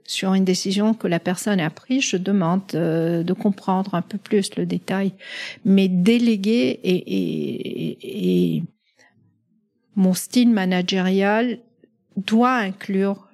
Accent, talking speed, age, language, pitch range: French, 130 wpm, 50-69, French, 175-220 Hz